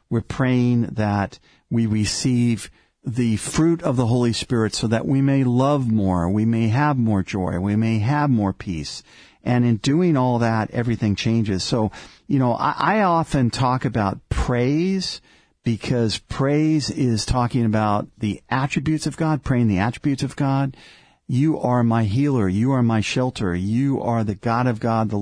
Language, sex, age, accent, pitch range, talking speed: English, male, 50-69, American, 105-130 Hz, 170 wpm